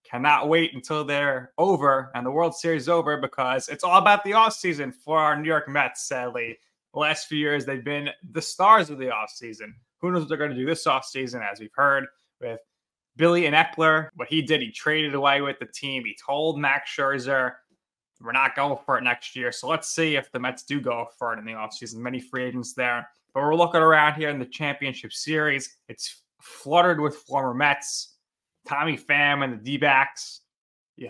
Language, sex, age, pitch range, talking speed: English, male, 20-39, 125-150 Hz, 205 wpm